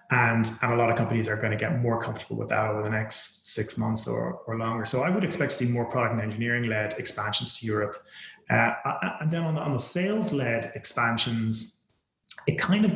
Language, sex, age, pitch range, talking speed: English, male, 30-49, 110-140 Hz, 220 wpm